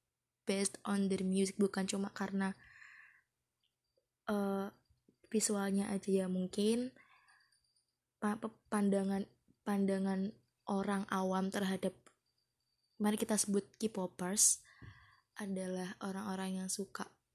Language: Malay